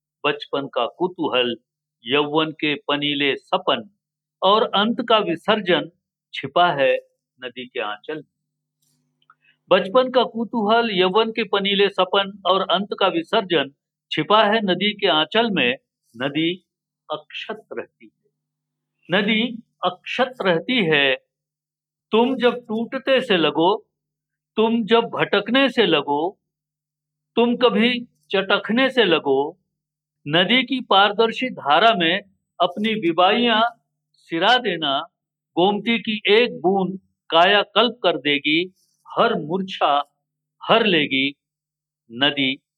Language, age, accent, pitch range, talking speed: Hindi, 60-79, native, 145-220 Hz, 110 wpm